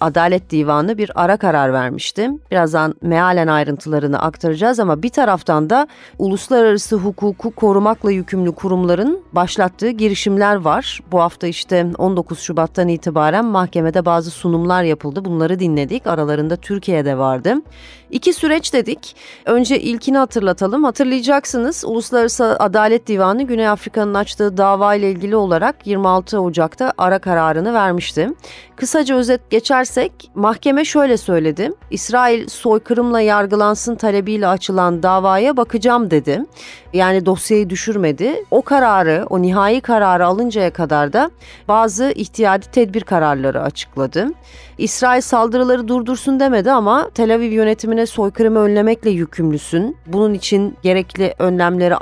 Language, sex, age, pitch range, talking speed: Turkish, female, 30-49, 170-230 Hz, 120 wpm